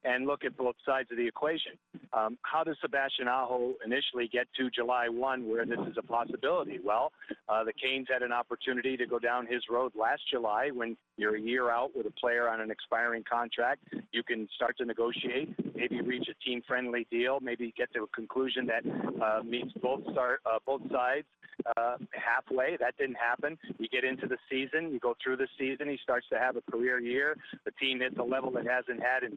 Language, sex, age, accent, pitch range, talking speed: English, male, 50-69, American, 120-140 Hz, 210 wpm